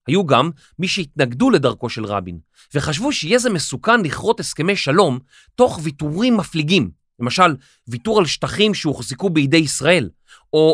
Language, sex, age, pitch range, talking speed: Hebrew, male, 30-49, 125-195 Hz, 140 wpm